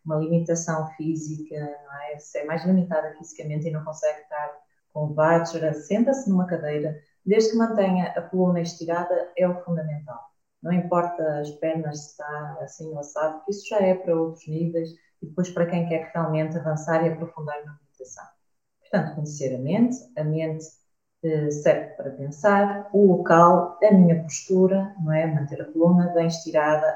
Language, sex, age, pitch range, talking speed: Portuguese, female, 20-39, 155-180 Hz, 165 wpm